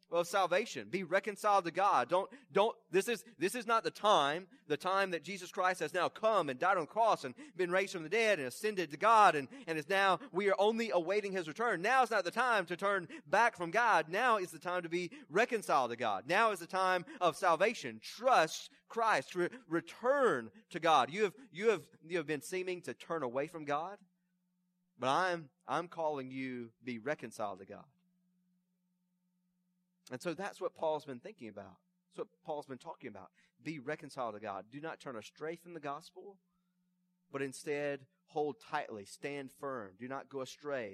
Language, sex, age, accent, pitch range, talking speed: English, male, 30-49, American, 140-185 Hz, 200 wpm